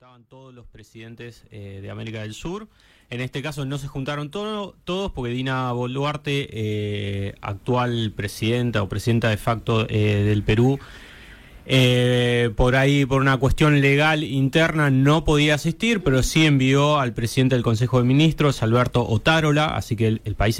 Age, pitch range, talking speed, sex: 20-39, 115-150 Hz, 165 wpm, male